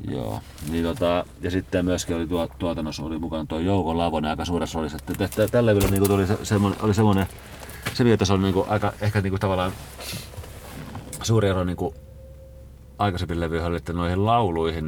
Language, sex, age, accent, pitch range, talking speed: Finnish, male, 40-59, native, 80-100 Hz, 150 wpm